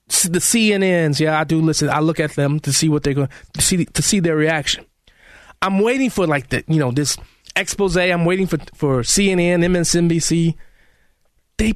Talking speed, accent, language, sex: 190 wpm, American, English, male